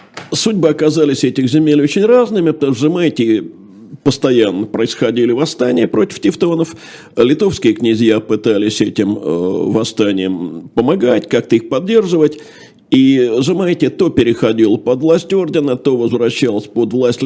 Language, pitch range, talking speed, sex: Russian, 120-155 Hz, 120 wpm, male